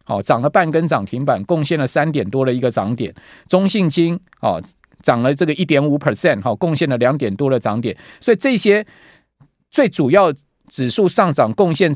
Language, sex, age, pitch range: Chinese, male, 50-69, 135-185 Hz